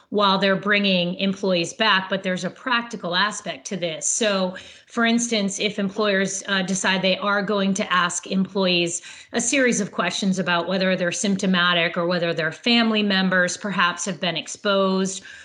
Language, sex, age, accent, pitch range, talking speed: English, female, 40-59, American, 185-220 Hz, 165 wpm